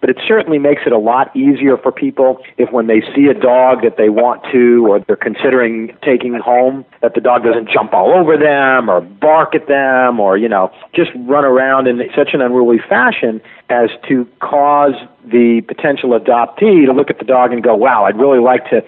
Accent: American